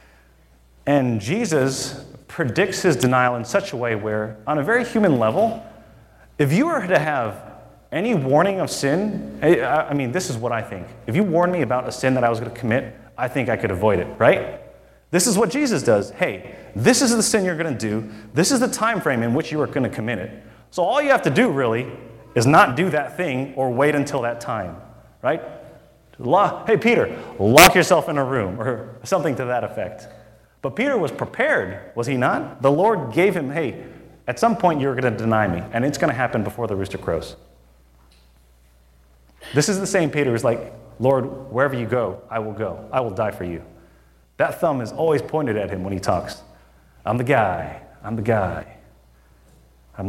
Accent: American